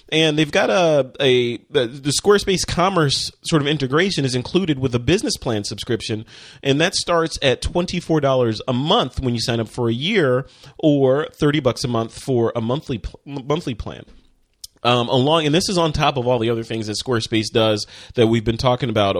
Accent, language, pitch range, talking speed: American, English, 120-155 Hz, 200 wpm